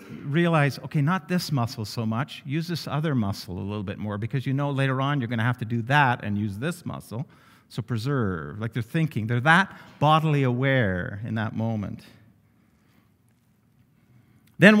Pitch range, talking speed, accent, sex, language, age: 115-165 Hz, 180 wpm, American, male, English, 50-69